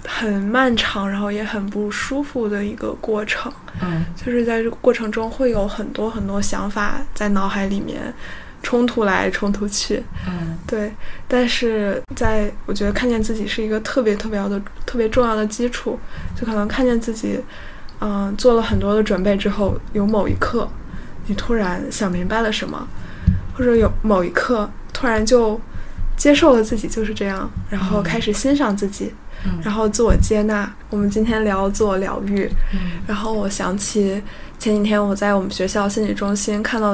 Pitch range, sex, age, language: 195-225 Hz, female, 10-29, Chinese